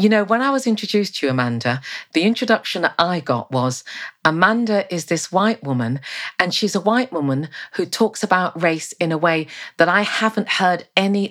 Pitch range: 150-220 Hz